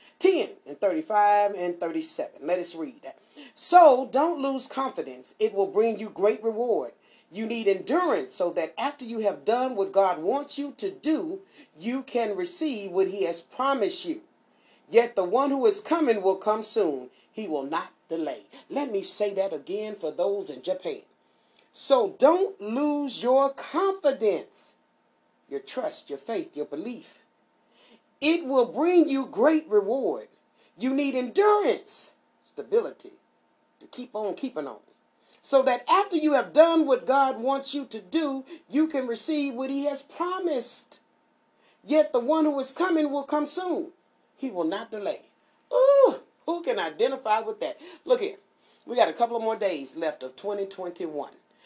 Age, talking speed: 40-59, 160 wpm